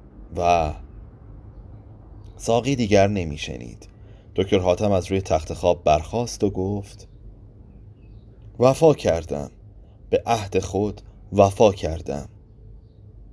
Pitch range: 95-110 Hz